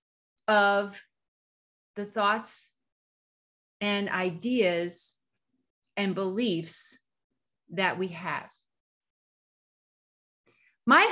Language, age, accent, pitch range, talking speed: English, 30-49, American, 185-235 Hz, 60 wpm